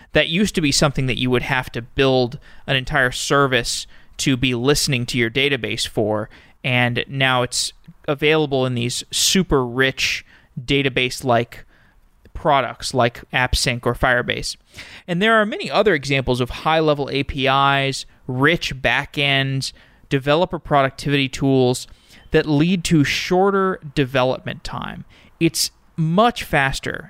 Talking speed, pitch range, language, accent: 130 wpm, 130-160 Hz, English, American